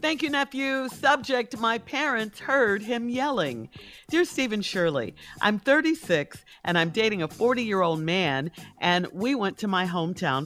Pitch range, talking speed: 150-230 Hz, 150 wpm